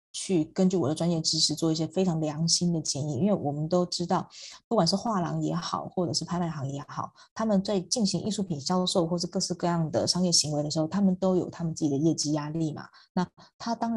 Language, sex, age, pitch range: Chinese, female, 20-39, 155-190 Hz